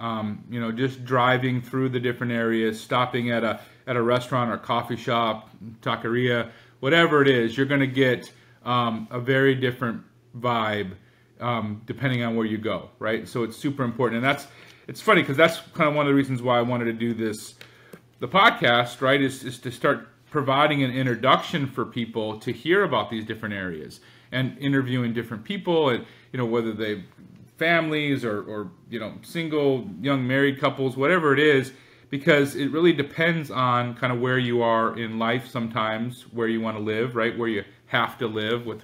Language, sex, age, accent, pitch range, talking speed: English, male, 40-59, American, 115-135 Hz, 190 wpm